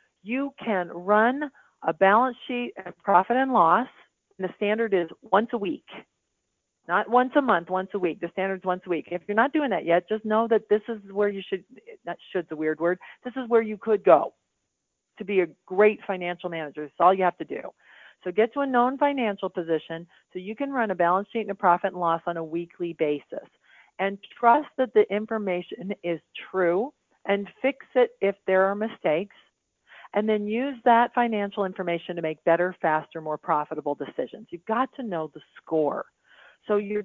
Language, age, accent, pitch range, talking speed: English, 40-59, American, 175-230 Hz, 200 wpm